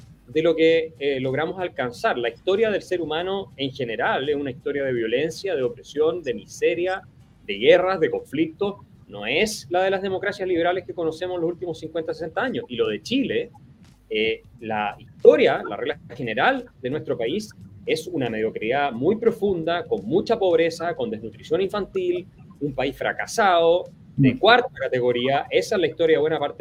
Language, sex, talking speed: Spanish, male, 175 wpm